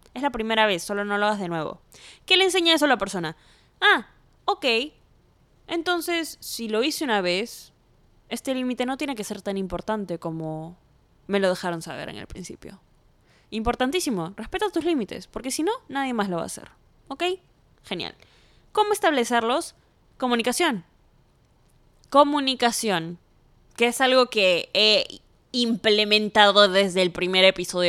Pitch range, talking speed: 190-285 Hz, 150 wpm